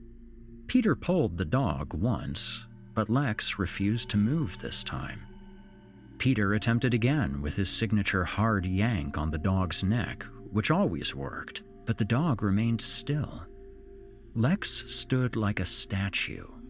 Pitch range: 100-120 Hz